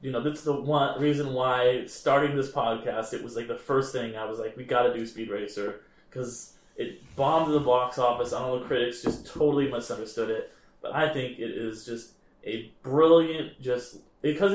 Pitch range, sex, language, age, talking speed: 120-155 Hz, male, English, 20-39, 200 wpm